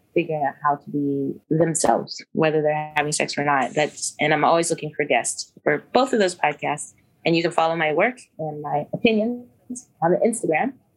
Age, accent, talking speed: 20-39, American, 190 wpm